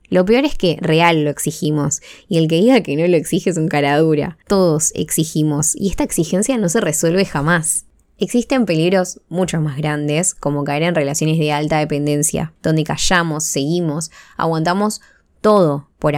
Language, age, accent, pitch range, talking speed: Spanish, 10-29, Argentinian, 150-180 Hz, 170 wpm